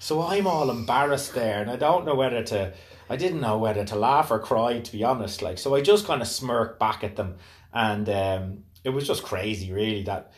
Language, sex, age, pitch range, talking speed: English, male, 30-49, 100-125 Hz, 230 wpm